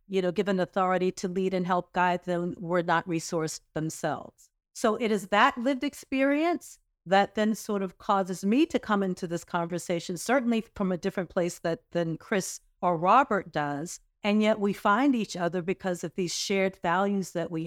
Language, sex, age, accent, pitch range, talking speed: English, female, 50-69, American, 170-200 Hz, 185 wpm